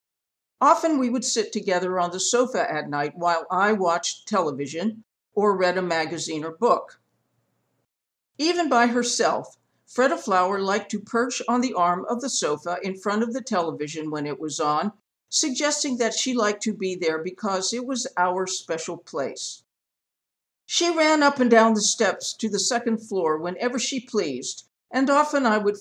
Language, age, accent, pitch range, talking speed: English, 50-69, American, 180-255 Hz, 170 wpm